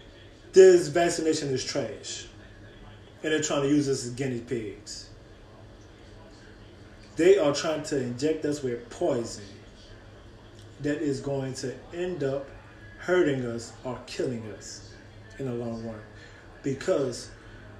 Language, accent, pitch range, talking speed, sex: English, American, 110-140 Hz, 125 wpm, male